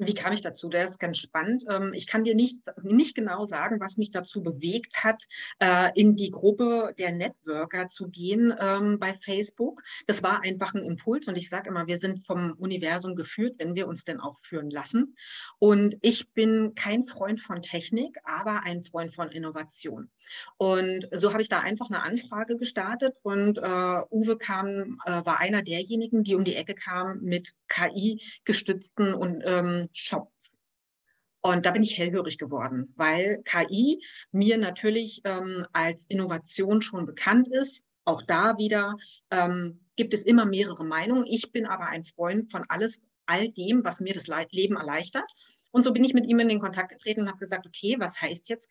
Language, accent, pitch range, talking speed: German, German, 175-220 Hz, 175 wpm